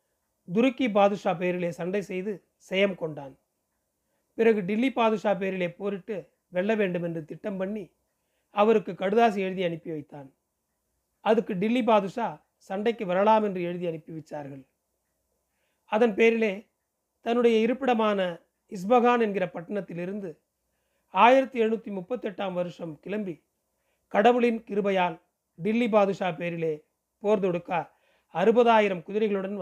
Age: 40-59